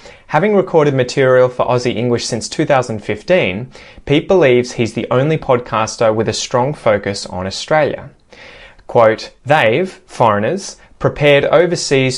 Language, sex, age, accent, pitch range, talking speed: English, male, 20-39, Australian, 115-140 Hz, 125 wpm